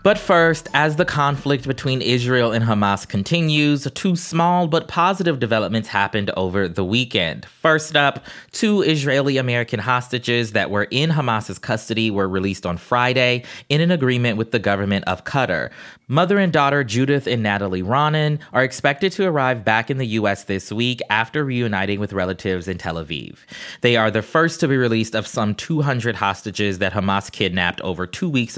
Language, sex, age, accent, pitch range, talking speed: English, male, 20-39, American, 100-135 Hz, 175 wpm